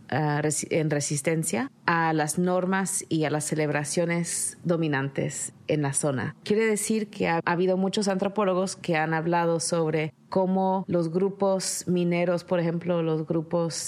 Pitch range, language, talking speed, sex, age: 155-185 Hz, English, 140 wpm, female, 30-49